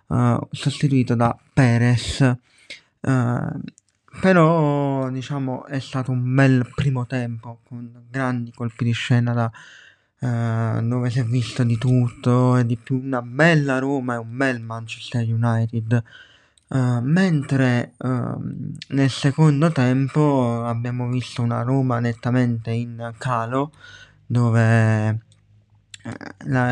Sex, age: male, 20-39